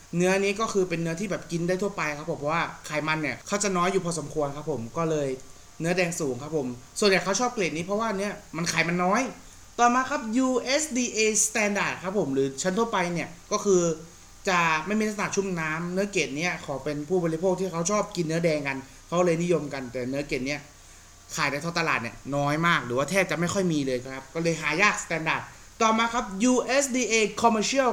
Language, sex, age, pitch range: Thai, male, 30-49, 160-215 Hz